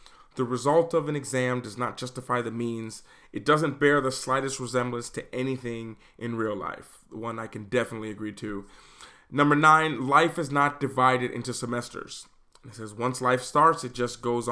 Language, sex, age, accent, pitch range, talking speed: English, male, 30-49, American, 125-150 Hz, 180 wpm